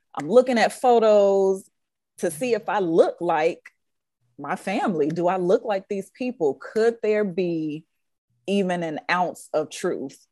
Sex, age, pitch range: female, 30-49, 165-210 Hz